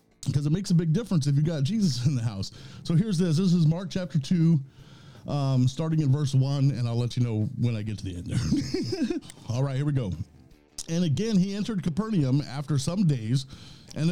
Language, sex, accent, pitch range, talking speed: English, male, American, 135-185 Hz, 220 wpm